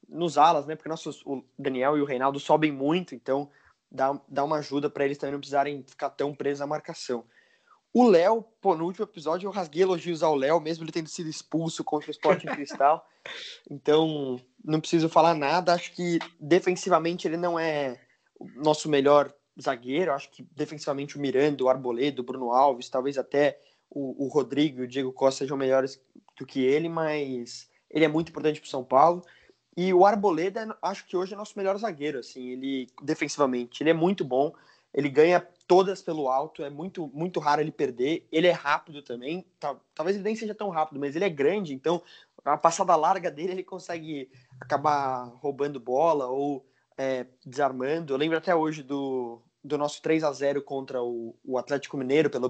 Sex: male